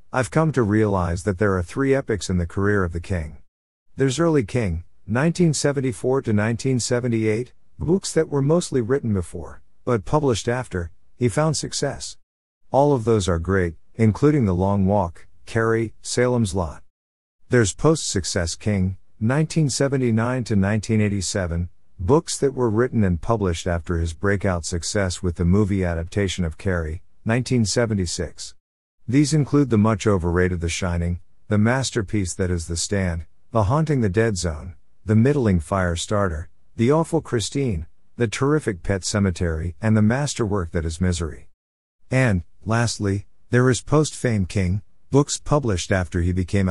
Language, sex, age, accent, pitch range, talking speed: English, male, 50-69, American, 90-125 Hz, 145 wpm